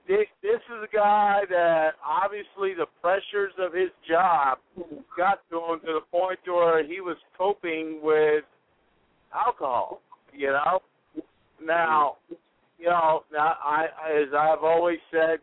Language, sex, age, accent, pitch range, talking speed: English, male, 60-79, American, 155-200 Hz, 130 wpm